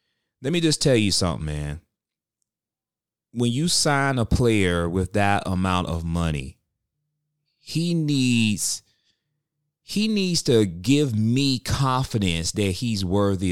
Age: 30-49